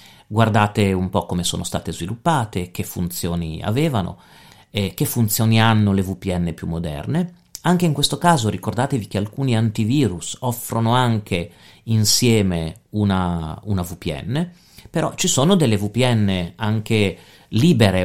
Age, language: 40-59, Italian